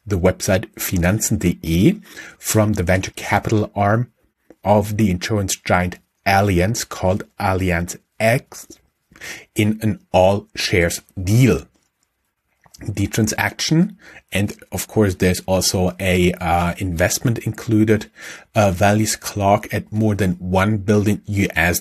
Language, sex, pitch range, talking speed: English, male, 90-110 Hz, 115 wpm